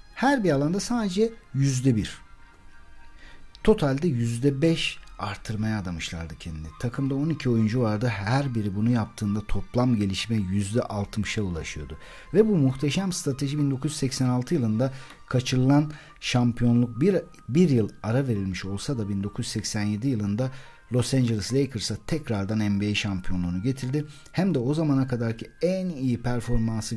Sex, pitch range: male, 105-150 Hz